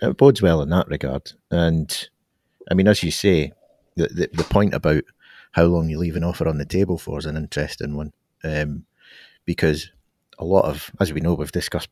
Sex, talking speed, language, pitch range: male, 205 wpm, English, 75-85 Hz